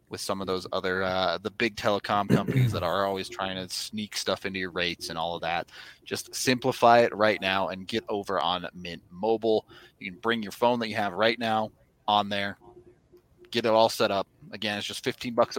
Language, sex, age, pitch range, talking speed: English, male, 30-49, 95-120 Hz, 220 wpm